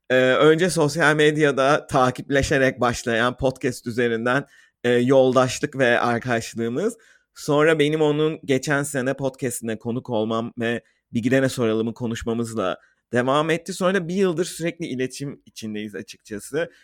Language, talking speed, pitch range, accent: Turkish, 120 wpm, 120-150 Hz, native